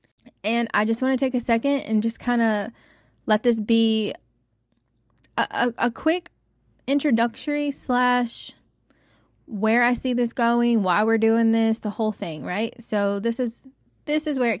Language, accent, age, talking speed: English, American, 20-39, 170 wpm